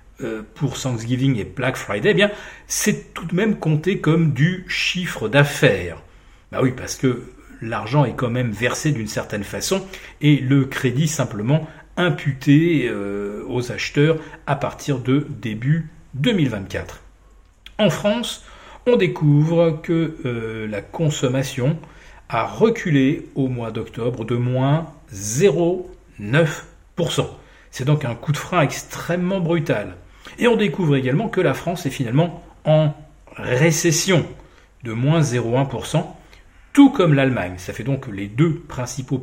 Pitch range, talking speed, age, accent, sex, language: 120-165 Hz, 135 wpm, 40-59, French, male, French